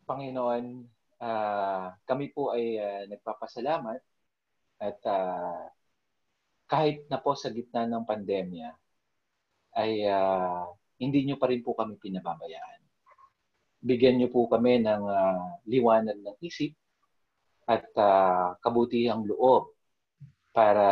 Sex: male